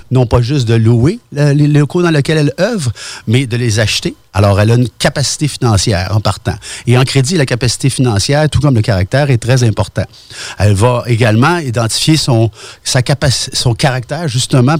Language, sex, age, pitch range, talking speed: French, male, 50-69, 105-145 Hz, 190 wpm